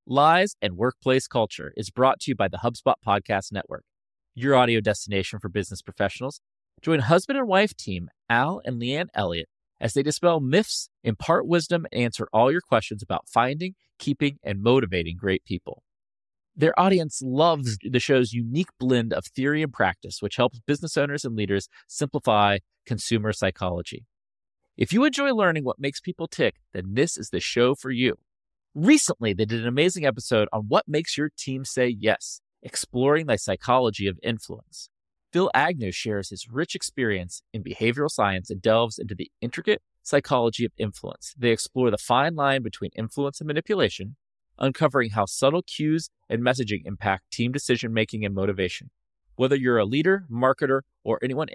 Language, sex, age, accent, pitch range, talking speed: English, male, 30-49, American, 105-140 Hz, 165 wpm